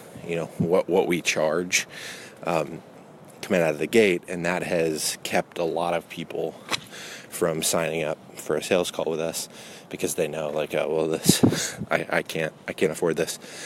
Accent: American